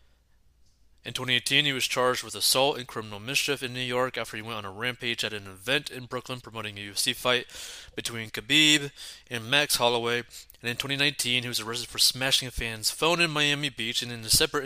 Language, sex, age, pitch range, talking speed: English, male, 20-39, 110-140 Hz, 210 wpm